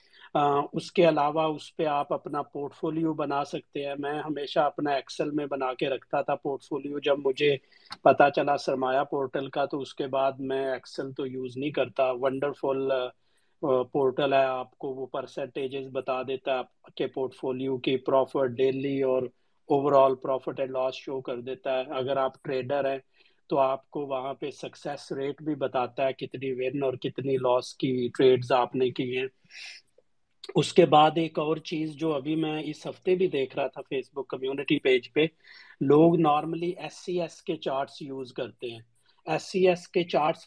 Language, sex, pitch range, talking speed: Urdu, male, 135-160 Hz, 185 wpm